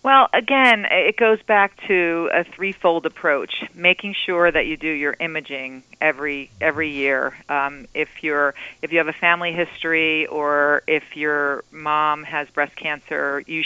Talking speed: 160 wpm